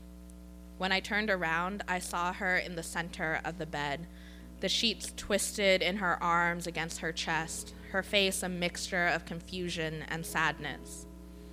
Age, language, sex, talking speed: 20-39, English, female, 155 wpm